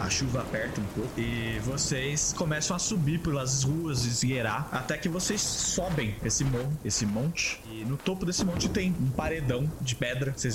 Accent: Brazilian